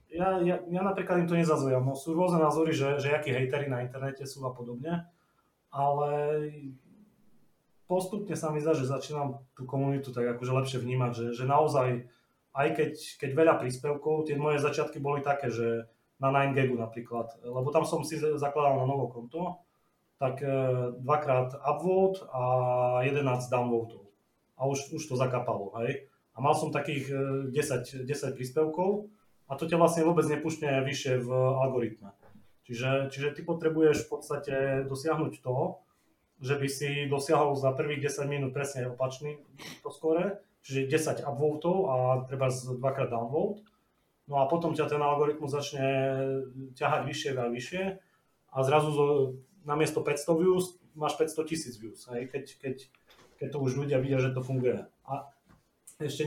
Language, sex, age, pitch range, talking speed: Slovak, male, 30-49, 130-155 Hz, 155 wpm